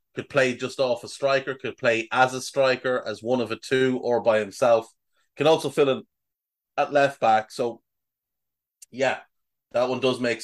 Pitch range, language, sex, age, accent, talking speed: 115-145 Hz, English, male, 30-49, Irish, 185 wpm